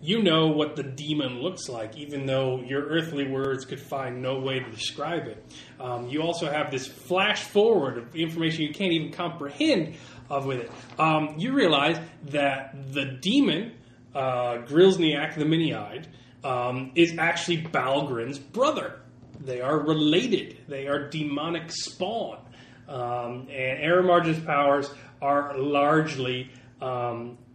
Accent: American